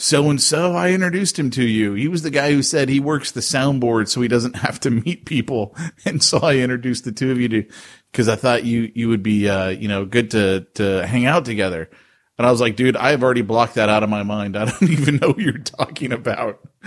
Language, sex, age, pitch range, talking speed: English, male, 30-49, 110-140 Hz, 255 wpm